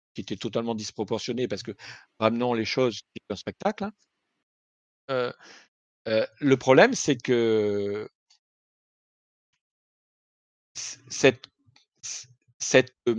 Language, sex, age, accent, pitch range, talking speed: French, male, 50-69, French, 120-150 Hz, 90 wpm